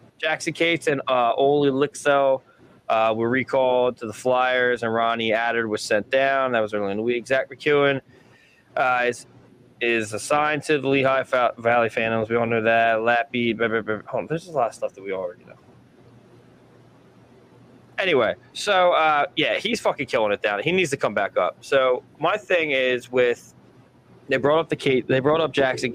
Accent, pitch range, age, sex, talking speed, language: American, 115-135 Hz, 20-39, male, 185 wpm, English